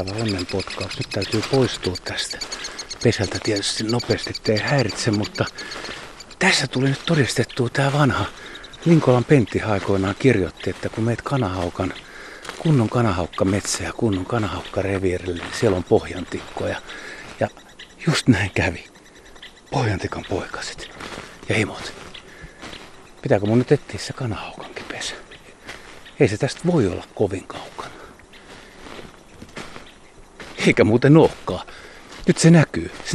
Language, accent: Finnish, native